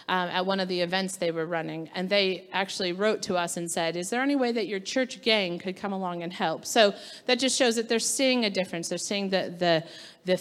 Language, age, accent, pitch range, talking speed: English, 40-59, American, 185-230 Hz, 255 wpm